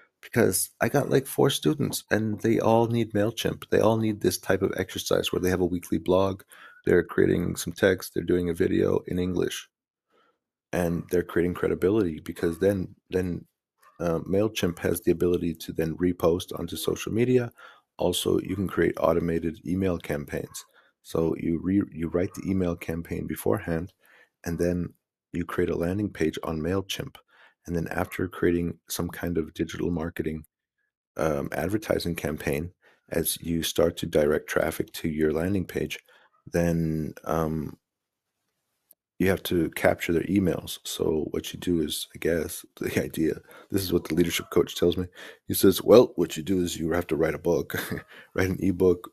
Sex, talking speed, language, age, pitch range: male, 170 wpm, English, 30-49, 80-90 Hz